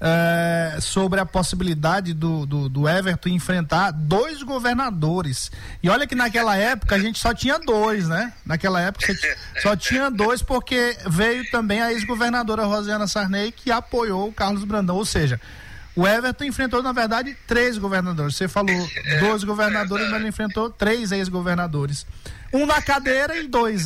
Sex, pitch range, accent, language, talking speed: male, 165-230 Hz, Brazilian, Portuguese, 155 wpm